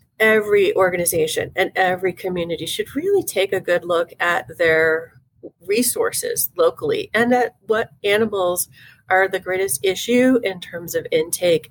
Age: 30-49